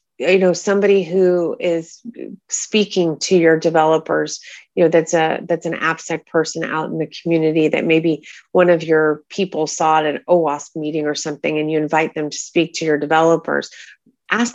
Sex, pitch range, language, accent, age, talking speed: female, 160-190 Hz, English, American, 30-49, 180 wpm